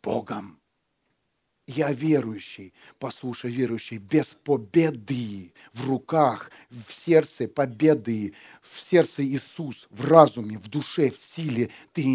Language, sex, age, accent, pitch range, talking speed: Russian, male, 40-59, native, 110-145 Hz, 110 wpm